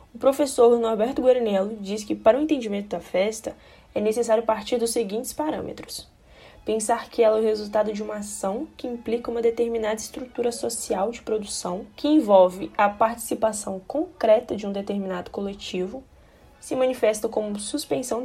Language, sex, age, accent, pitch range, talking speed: Portuguese, female, 10-29, Brazilian, 205-250 Hz, 155 wpm